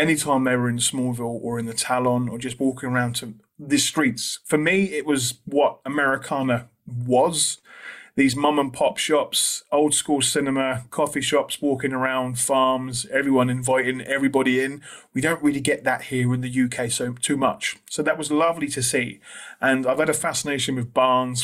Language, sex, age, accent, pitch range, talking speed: English, male, 30-49, British, 125-145 Hz, 180 wpm